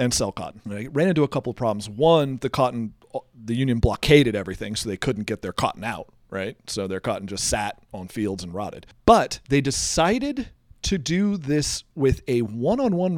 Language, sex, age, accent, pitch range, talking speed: English, male, 40-59, American, 115-170 Hz, 195 wpm